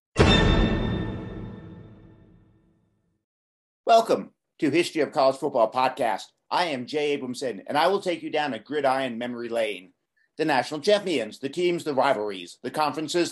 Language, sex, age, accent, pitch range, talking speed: English, male, 50-69, American, 140-195 Hz, 135 wpm